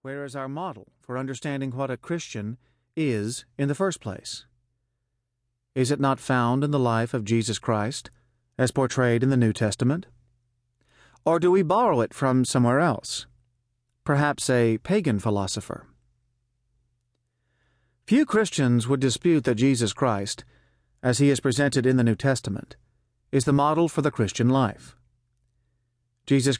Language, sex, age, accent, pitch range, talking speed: English, male, 40-59, American, 120-140 Hz, 145 wpm